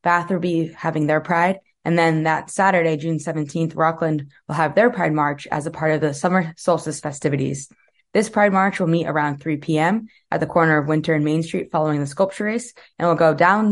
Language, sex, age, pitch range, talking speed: English, female, 20-39, 155-185 Hz, 220 wpm